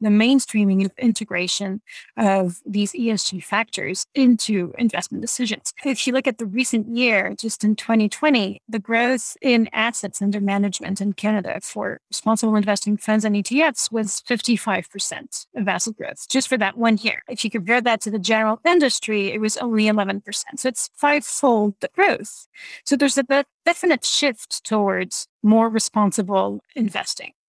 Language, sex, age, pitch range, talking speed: English, female, 30-49, 205-250 Hz, 155 wpm